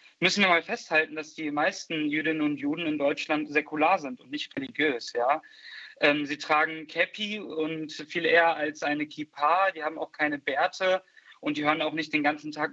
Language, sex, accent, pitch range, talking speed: German, male, German, 155-185 Hz, 185 wpm